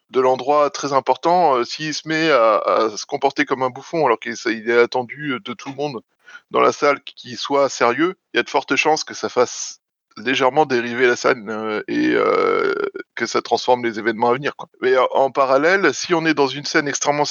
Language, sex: French, male